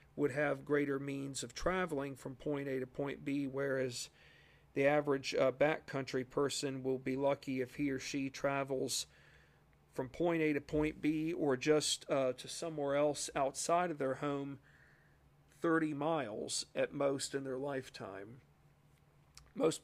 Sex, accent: male, American